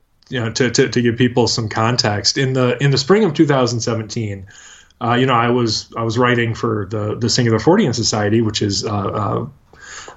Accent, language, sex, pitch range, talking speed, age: American, English, male, 110-125 Hz, 200 wpm, 20-39